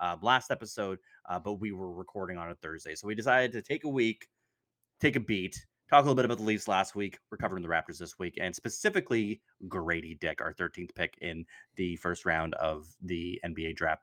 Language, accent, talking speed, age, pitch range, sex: English, American, 215 wpm, 30-49, 90-120 Hz, male